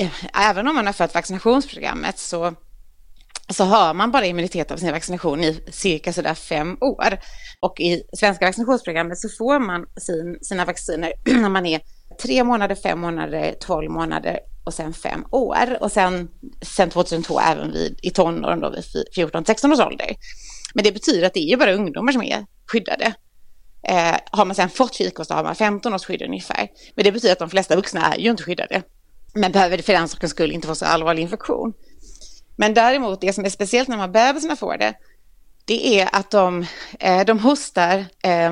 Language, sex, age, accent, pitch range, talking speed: English, female, 30-49, Swedish, 170-220 Hz, 190 wpm